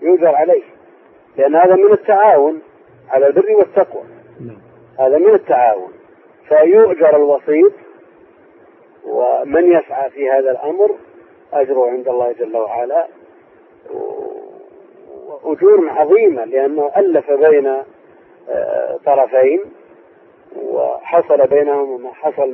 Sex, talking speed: male, 95 wpm